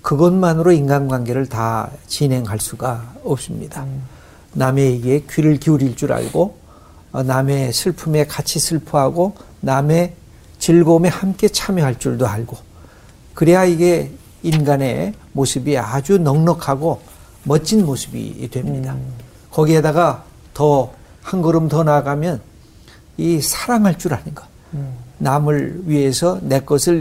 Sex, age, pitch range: male, 60-79, 130-170 Hz